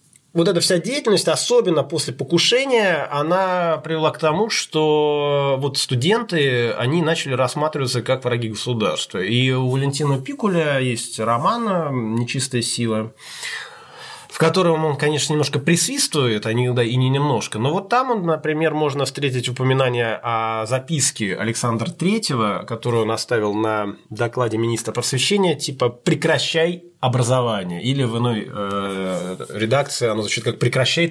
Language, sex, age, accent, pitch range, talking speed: Russian, male, 20-39, native, 125-175 Hz, 130 wpm